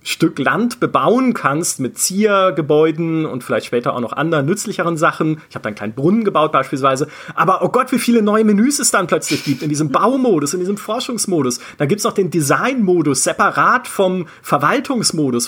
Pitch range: 140-200 Hz